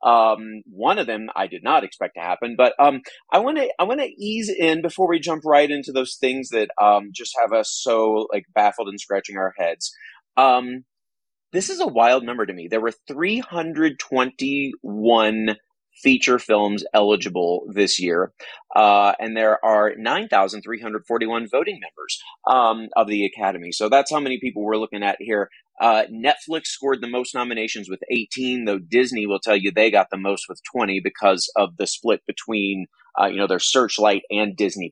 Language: English